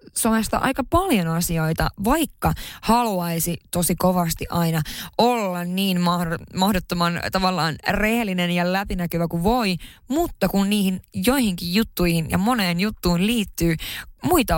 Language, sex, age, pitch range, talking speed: Finnish, female, 20-39, 170-205 Hz, 120 wpm